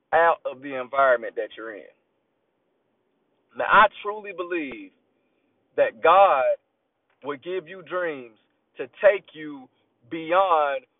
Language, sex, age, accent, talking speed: English, male, 40-59, American, 115 wpm